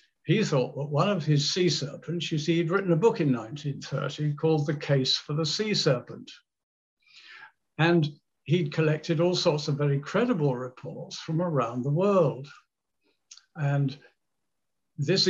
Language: English